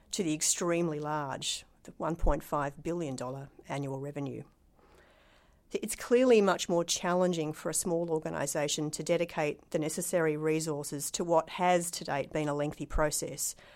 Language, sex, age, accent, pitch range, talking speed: English, female, 40-59, Australian, 150-180 Hz, 140 wpm